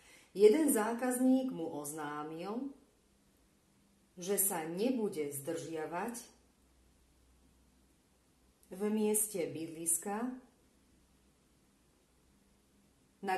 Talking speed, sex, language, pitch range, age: 55 wpm, female, Slovak, 145-230 Hz, 40-59